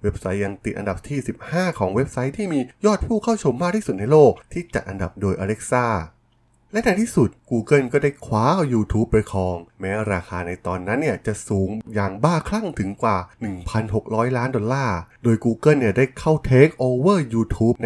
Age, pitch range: 20-39, 100-135 Hz